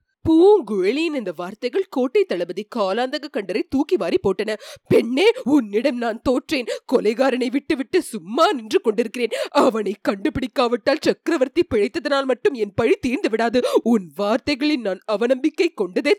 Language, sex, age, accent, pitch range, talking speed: Tamil, female, 20-39, native, 215-325 Hz, 80 wpm